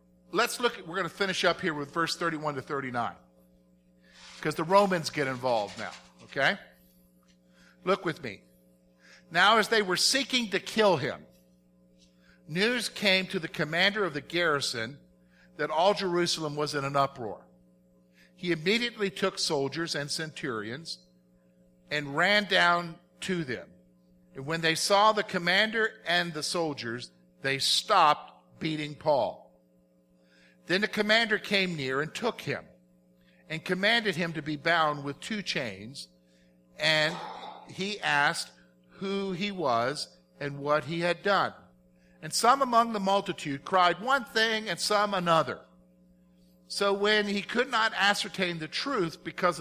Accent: American